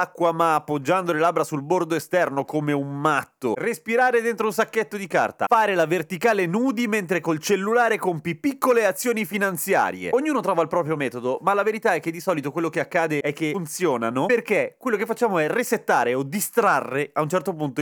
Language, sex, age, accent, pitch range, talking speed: Italian, male, 30-49, native, 145-210 Hz, 190 wpm